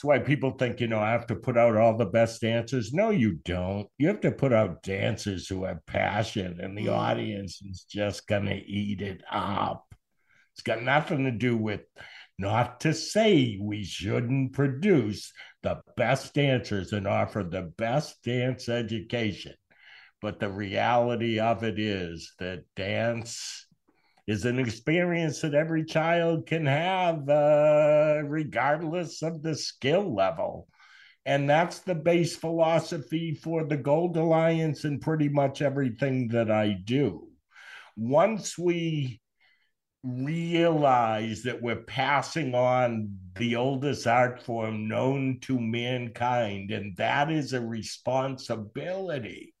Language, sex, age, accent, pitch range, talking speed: English, male, 60-79, American, 110-150 Hz, 135 wpm